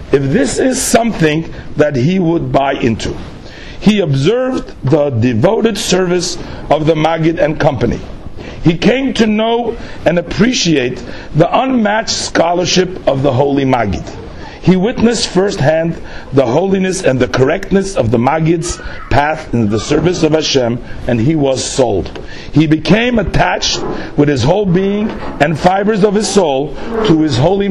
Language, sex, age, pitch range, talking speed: English, male, 50-69, 135-200 Hz, 145 wpm